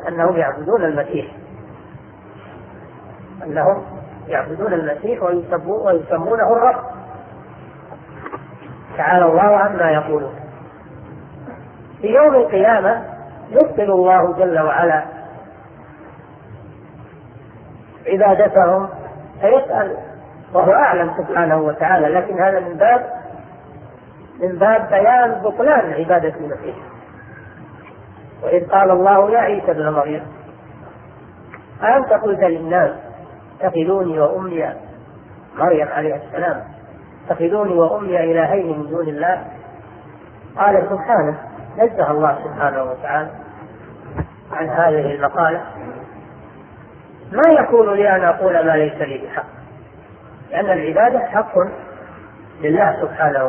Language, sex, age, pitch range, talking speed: Arabic, female, 40-59, 150-200 Hz, 90 wpm